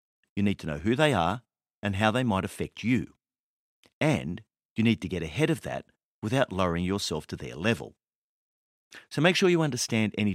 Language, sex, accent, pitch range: English, male, Australian, 90-125 Hz